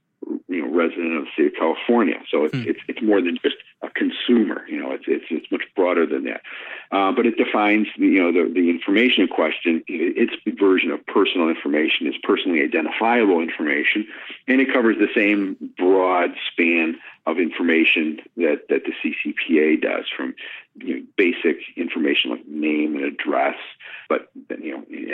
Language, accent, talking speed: English, American, 170 wpm